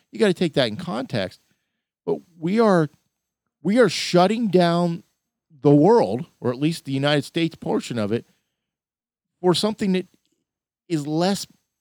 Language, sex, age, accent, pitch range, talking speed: English, male, 40-59, American, 120-185 Hz, 150 wpm